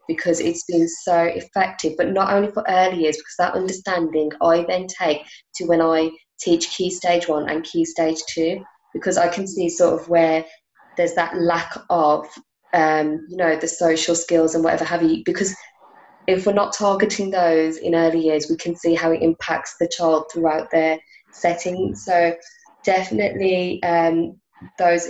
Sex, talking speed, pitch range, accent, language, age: female, 175 wpm, 160-185 Hz, British, English, 20-39